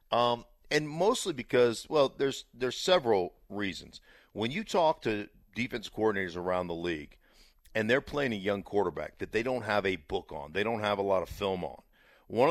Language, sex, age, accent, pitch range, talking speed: English, male, 50-69, American, 100-125 Hz, 190 wpm